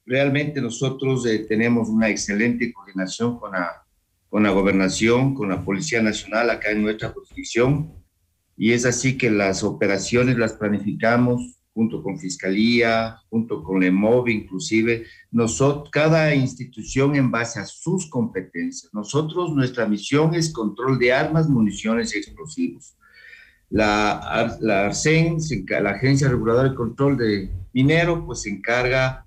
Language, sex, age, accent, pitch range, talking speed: Spanish, male, 50-69, Mexican, 105-135 Hz, 130 wpm